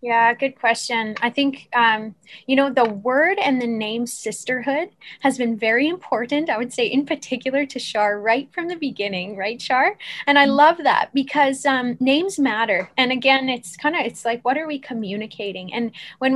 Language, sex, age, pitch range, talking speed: English, female, 10-29, 225-260 Hz, 190 wpm